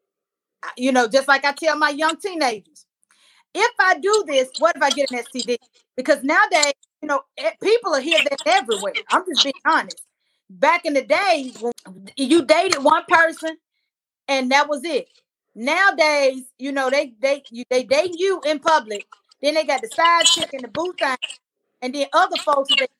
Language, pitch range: English, 270-340 Hz